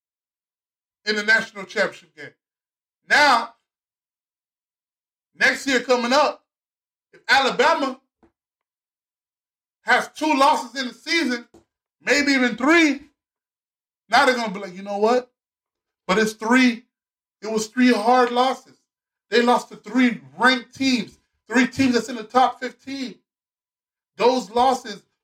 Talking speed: 125 wpm